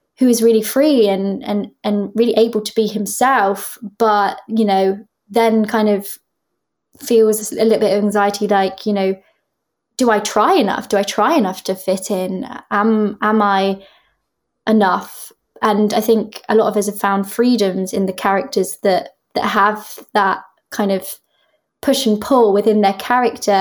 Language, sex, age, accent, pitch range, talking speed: English, female, 20-39, British, 195-225 Hz, 170 wpm